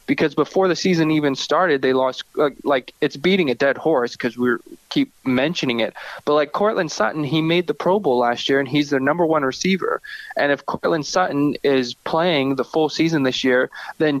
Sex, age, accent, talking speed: male, 20-39, American, 205 wpm